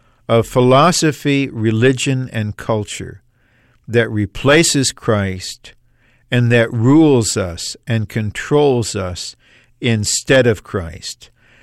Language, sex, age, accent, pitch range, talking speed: English, male, 50-69, American, 110-125 Hz, 95 wpm